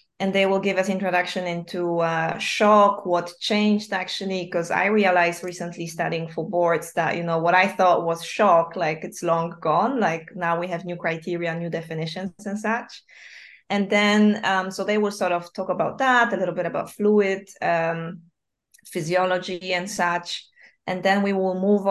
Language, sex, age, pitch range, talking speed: Greek, female, 20-39, 170-195 Hz, 180 wpm